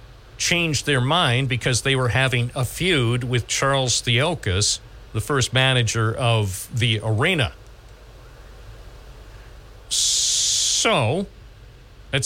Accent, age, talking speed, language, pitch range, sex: American, 50-69, 100 wpm, English, 110-130 Hz, male